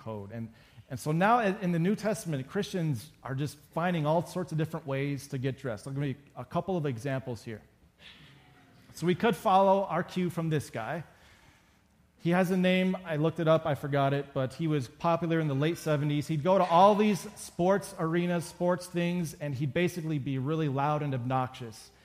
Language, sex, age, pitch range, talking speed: English, male, 40-59, 135-180 Hz, 205 wpm